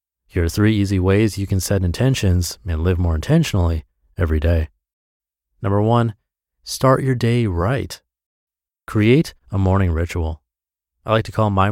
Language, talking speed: English, 155 wpm